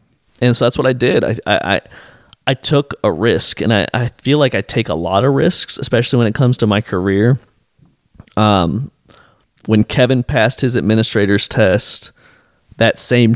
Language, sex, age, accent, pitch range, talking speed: English, male, 20-39, American, 95-115 Hz, 175 wpm